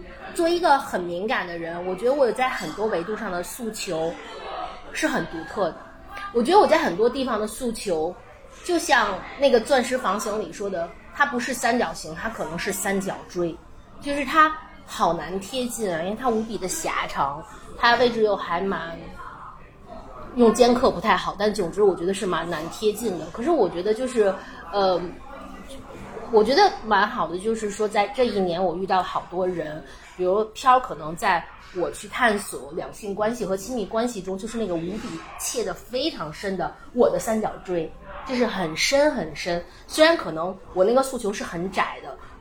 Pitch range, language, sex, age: 190-265 Hz, Chinese, female, 20-39